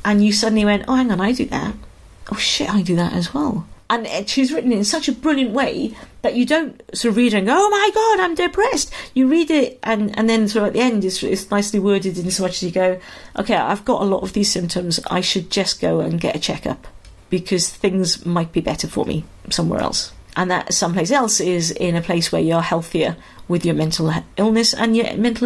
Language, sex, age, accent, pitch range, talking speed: English, female, 40-59, British, 180-230 Hz, 245 wpm